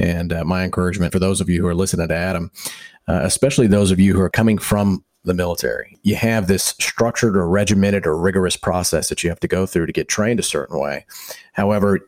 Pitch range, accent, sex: 90-110 Hz, American, male